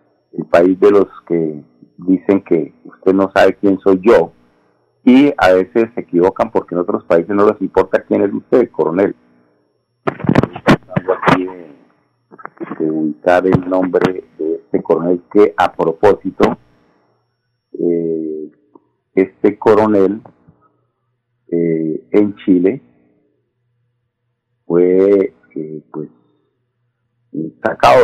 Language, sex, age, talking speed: Spanish, male, 50-69, 105 wpm